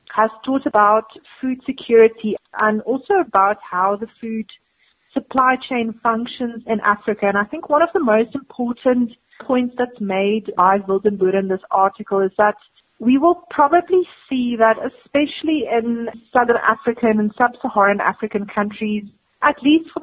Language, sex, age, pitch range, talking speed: English, female, 30-49, 205-245 Hz, 150 wpm